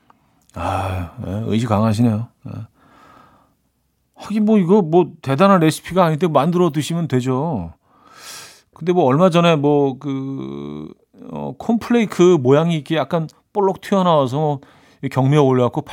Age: 40-59